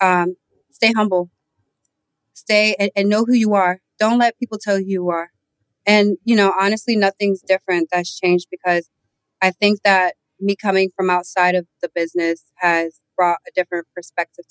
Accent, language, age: American, English, 30-49